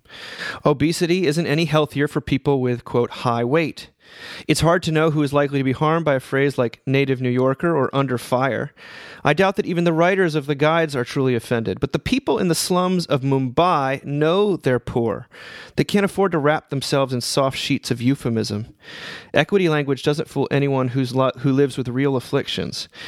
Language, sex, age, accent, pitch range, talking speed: English, male, 30-49, American, 115-145 Hz, 190 wpm